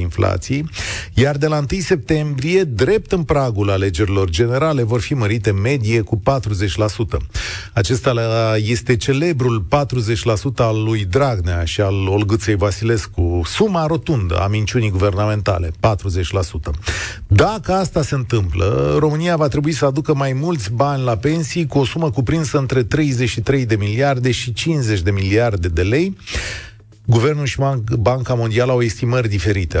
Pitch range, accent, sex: 100-140 Hz, native, male